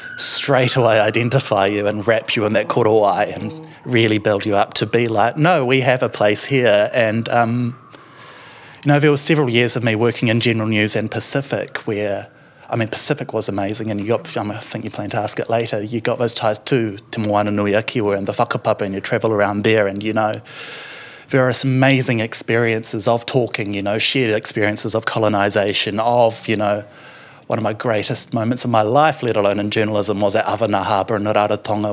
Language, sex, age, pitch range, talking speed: English, male, 30-49, 110-135 Hz, 205 wpm